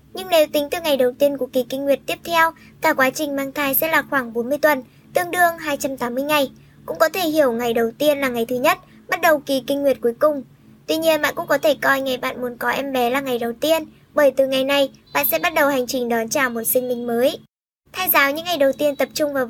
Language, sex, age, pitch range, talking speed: Vietnamese, male, 20-39, 255-305 Hz, 270 wpm